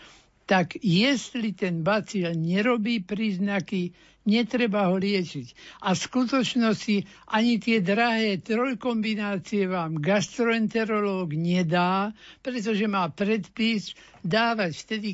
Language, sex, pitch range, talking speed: Slovak, male, 170-215 Hz, 95 wpm